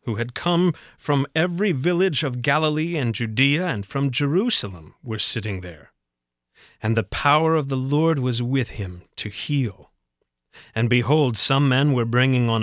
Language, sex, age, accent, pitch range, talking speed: English, male, 30-49, American, 105-145 Hz, 160 wpm